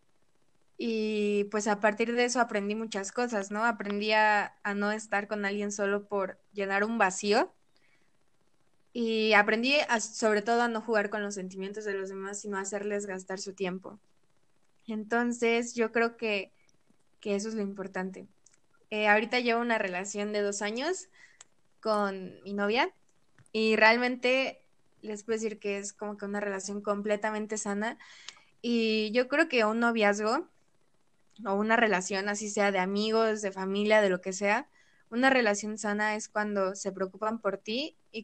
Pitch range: 200-230 Hz